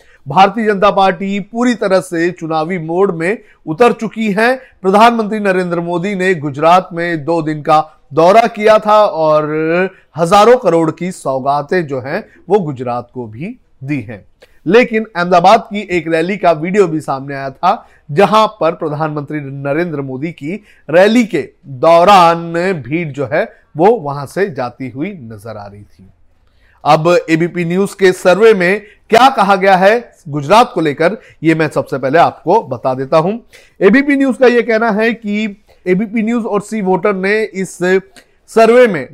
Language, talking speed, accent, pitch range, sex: Hindi, 160 wpm, native, 155-210 Hz, male